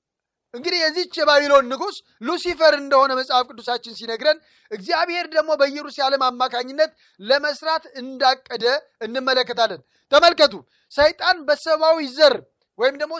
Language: Amharic